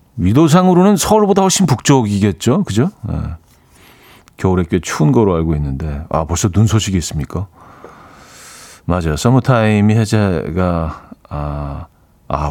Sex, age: male, 40-59